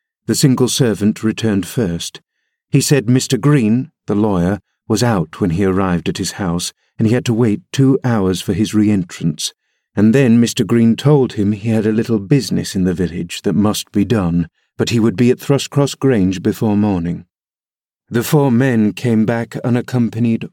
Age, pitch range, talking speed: 50-69, 100-125 Hz, 180 wpm